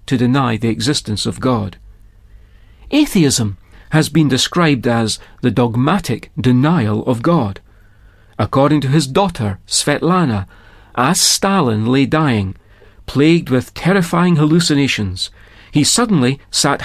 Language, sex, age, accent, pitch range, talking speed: English, male, 40-59, British, 105-165 Hz, 115 wpm